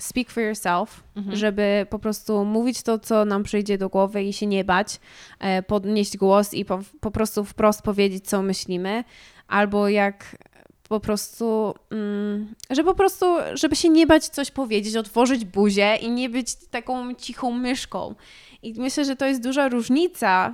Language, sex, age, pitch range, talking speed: Polish, female, 20-39, 210-275 Hz, 155 wpm